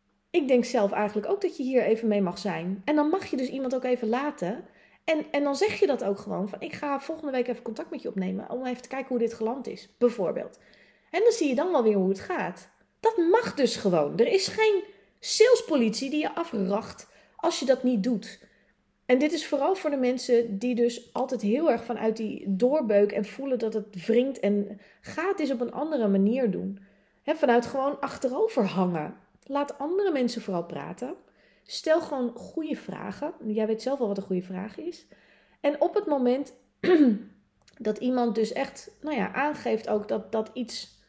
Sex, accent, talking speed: female, Dutch, 205 wpm